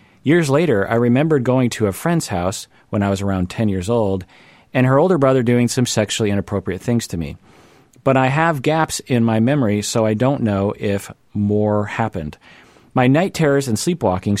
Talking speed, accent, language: 190 wpm, American, English